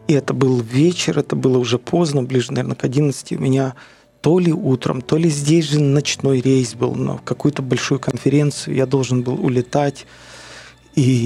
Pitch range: 120-145 Hz